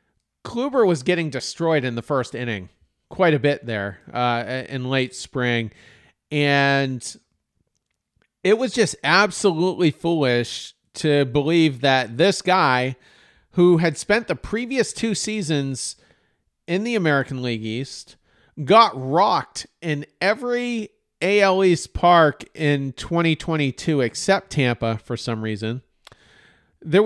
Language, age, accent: English, 40-59, American